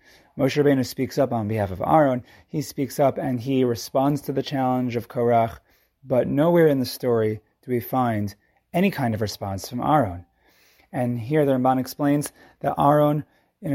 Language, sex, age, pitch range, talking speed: English, male, 30-49, 120-155 Hz, 180 wpm